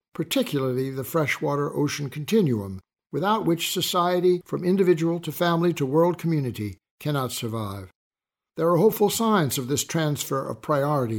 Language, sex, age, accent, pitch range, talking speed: English, male, 60-79, American, 130-175 Hz, 140 wpm